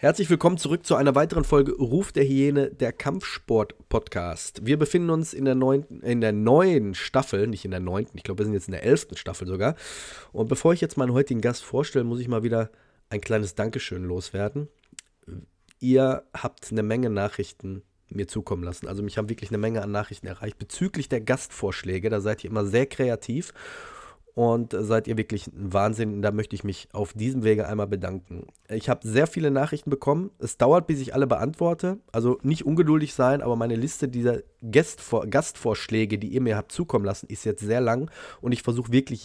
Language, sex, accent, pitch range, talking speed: German, male, German, 105-140 Hz, 195 wpm